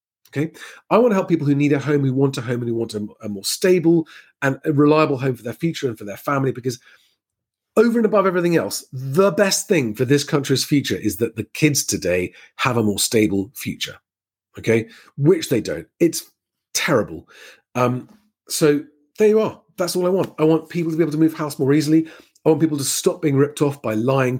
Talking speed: 225 wpm